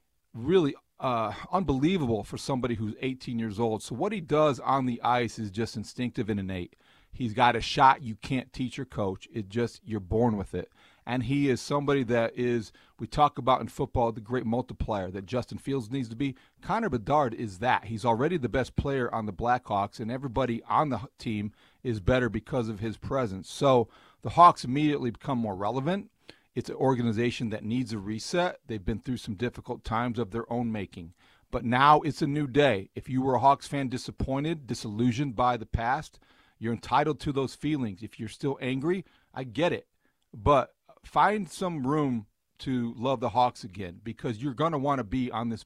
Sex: male